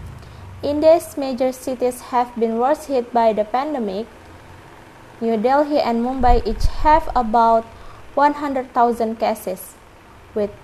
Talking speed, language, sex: 115 wpm, English, female